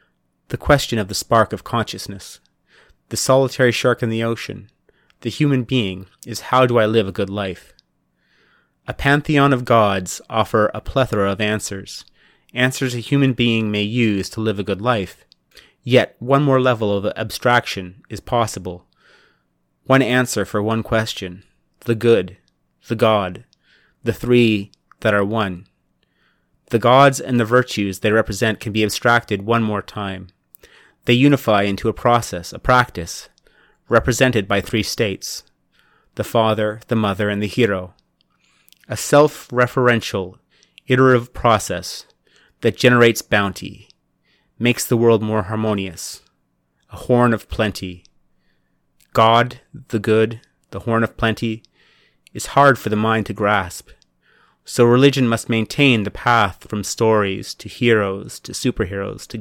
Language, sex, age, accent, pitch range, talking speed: English, male, 30-49, American, 100-120 Hz, 140 wpm